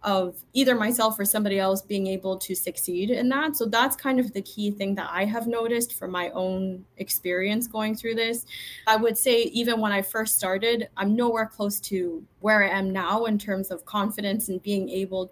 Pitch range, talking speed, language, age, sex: 190-230 Hz, 210 wpm, English, 20-39, female